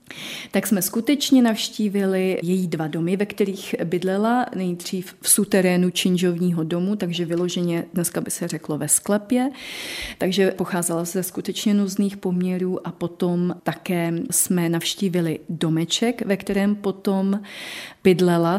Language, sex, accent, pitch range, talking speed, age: Czech, female, native, 180-225 Hz, 125 wpm, 30-49